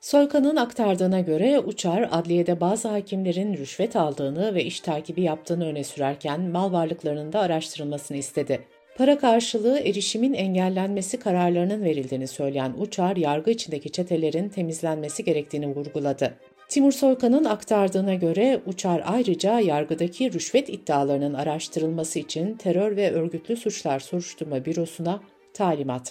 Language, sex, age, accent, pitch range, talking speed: Turkish, female, 60-79, native, 150-210 Hz, 120 wpm